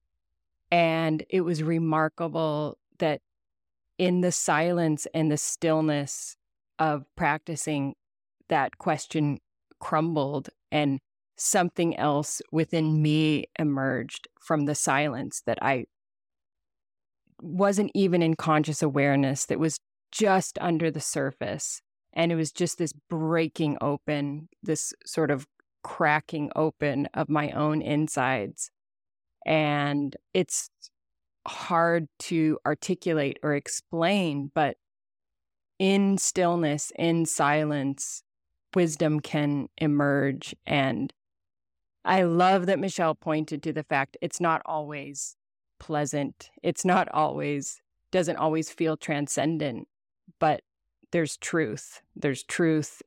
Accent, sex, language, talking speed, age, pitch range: American, female, English, 105 wpm, 20-39, 140-165 Hz